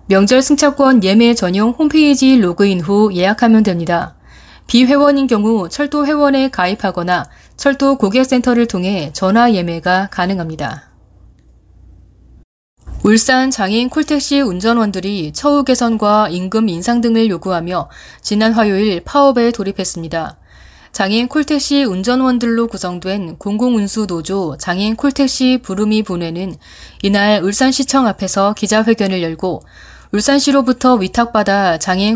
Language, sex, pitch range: Korean, female, 185-245 Hz